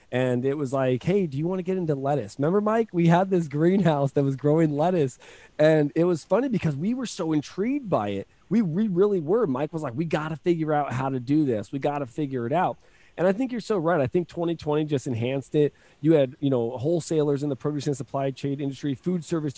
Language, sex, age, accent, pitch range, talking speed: English, male, 20-39, American, 135-170 Hz, 250 wpm